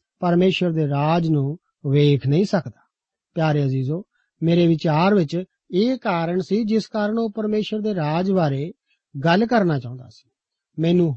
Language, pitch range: Punjabi, 155-210 Hz